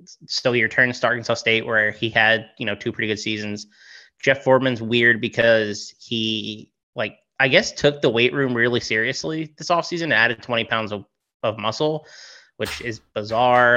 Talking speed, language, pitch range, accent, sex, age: 180 wpm, English, 110-140 Hz, American, male, 20-39